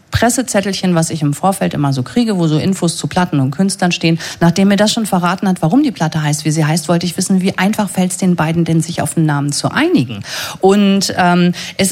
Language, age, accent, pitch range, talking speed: German, 40-59, German, 170-210 Hz, 240 wpm